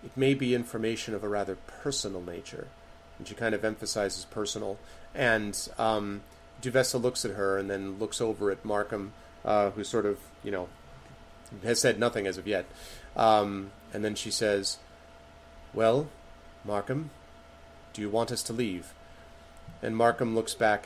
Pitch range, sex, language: 85-115 Hz, male, English